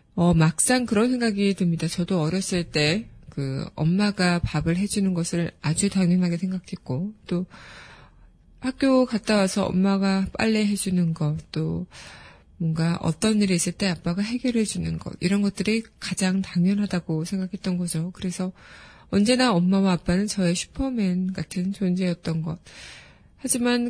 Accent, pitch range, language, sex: native, 170-205 Hz, Korean, female